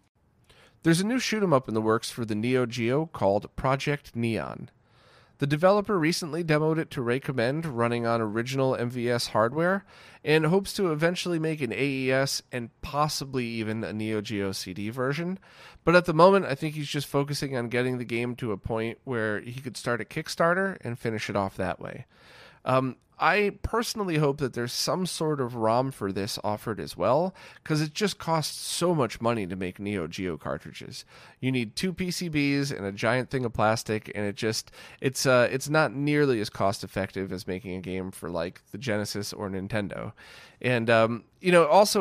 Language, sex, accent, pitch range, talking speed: English, male, American, 110-150 Hz, 190 wpm